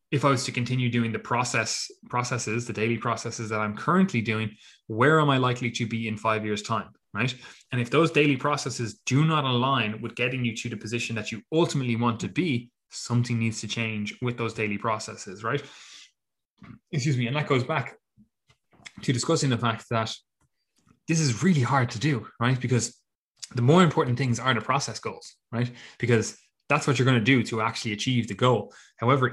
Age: 20-39